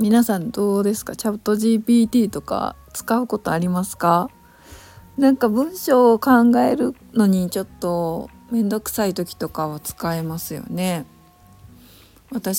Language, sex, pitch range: Japanese, female, 150-210 Hz